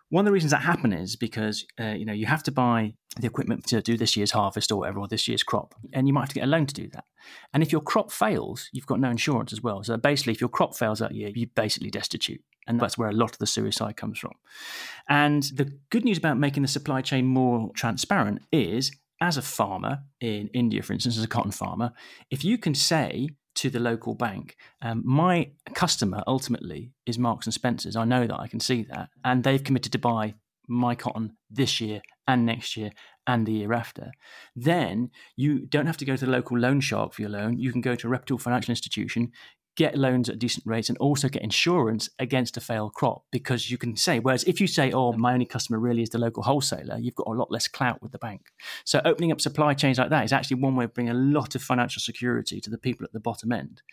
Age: 30-49